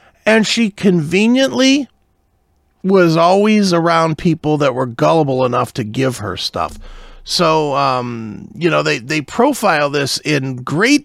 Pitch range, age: 130-170 Hz, 40-59